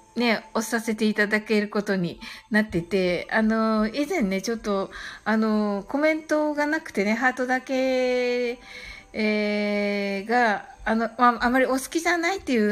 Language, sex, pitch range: Japanese, female, 220-310 Hz